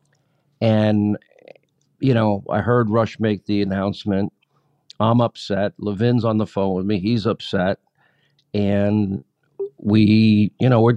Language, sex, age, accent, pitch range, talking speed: English, male, 50-69, American, 105-130 Hz, 130 wpm